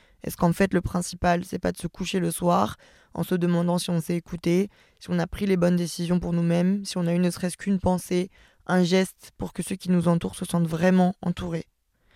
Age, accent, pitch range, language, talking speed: 20-39, French, 170-185 Hz, French, 235 wpm